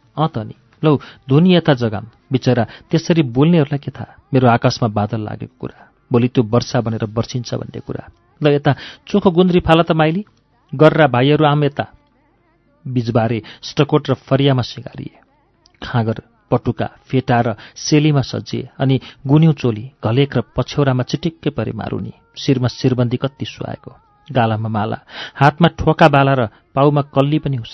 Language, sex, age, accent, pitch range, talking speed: English, male, 40-59, Indian, 115-145 Hz, 105 wpm